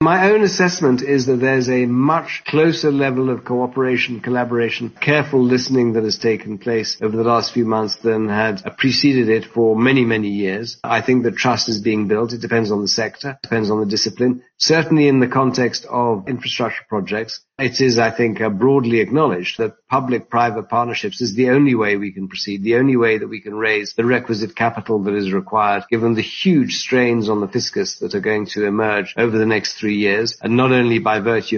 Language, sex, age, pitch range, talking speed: English, male, 50-69, 110-125 Hz, 200 wpm